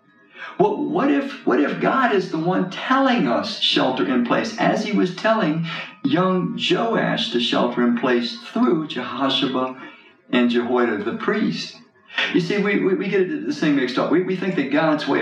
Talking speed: 180 wpm